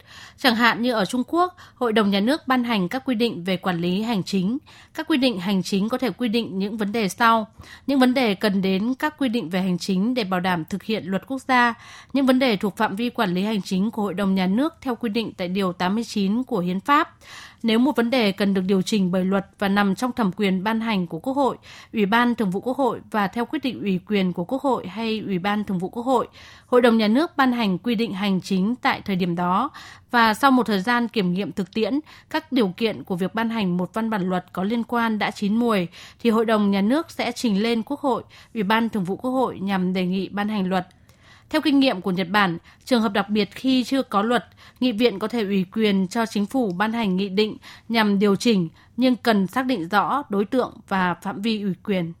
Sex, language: female, Vietnamese